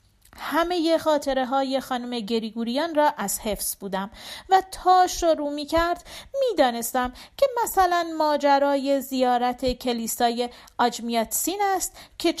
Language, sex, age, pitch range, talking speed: Persian, female, 40-59, 240-330 Hz, 120 wpm